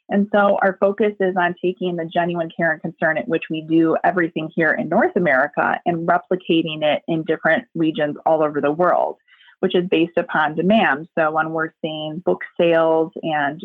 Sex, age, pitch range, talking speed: female, 30-49, 160-195 Hz, 190 wpm